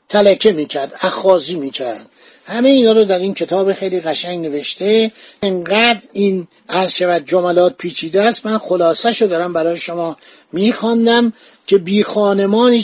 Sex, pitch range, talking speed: male, 180-230 Hz, 125 wpm